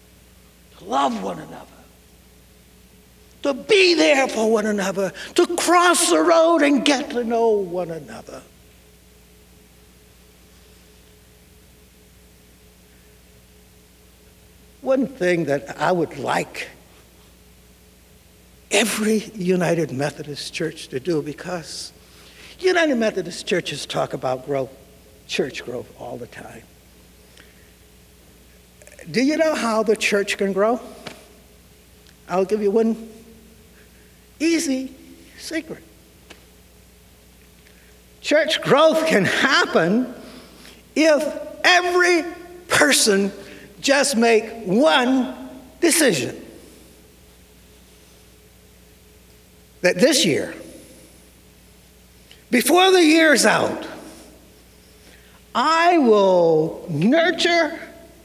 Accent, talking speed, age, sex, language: American, 80 wpm, 60-79, male, English